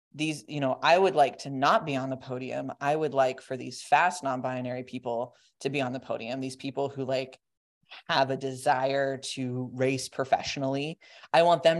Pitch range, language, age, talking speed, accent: 135-150 Hz, English, 20-39, 195 wpm, American